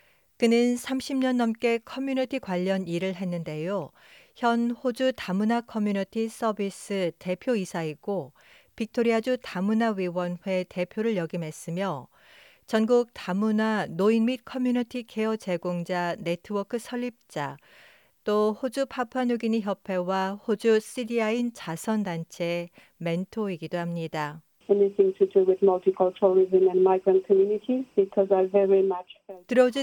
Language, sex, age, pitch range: Korean, female, 40-59, 180-230 Hz